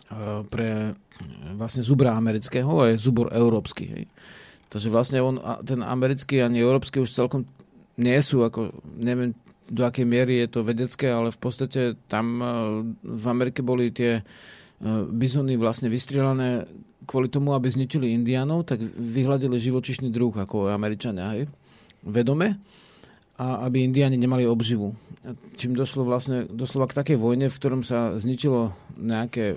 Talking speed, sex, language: 135 wpm, male, Slovak